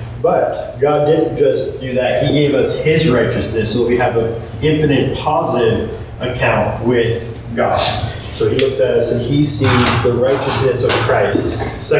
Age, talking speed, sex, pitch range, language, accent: 40-59, 165 wpm, male, 105-130 Hz, English, American